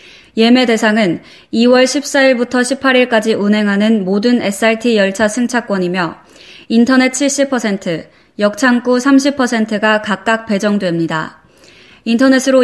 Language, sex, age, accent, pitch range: Korean, female, 20-39, native, 205-250 Hz